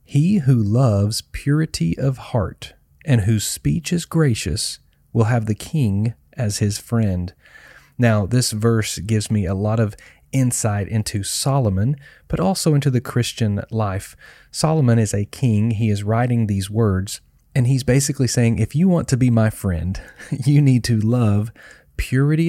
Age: 40-59